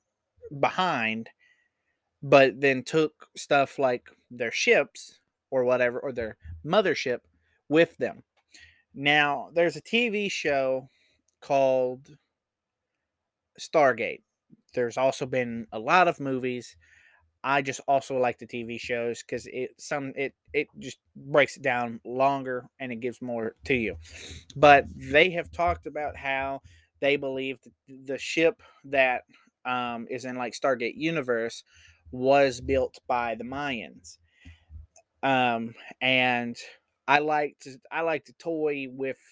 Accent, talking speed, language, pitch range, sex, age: American, 120 wpm, English, 115-145 Hz, male, 20-39